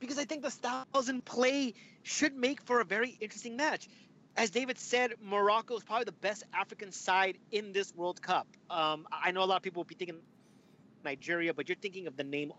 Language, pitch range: English, 170-220 Hz